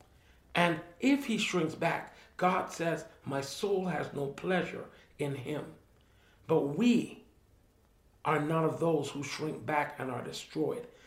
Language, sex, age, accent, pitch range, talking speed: English, male, 50-69, American, 150-190 Hz, 140 wpm